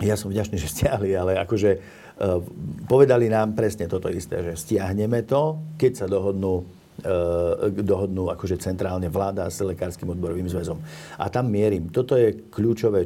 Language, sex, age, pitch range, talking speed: Slovak, male, 50-69, 90-110 Hz, 145 wpm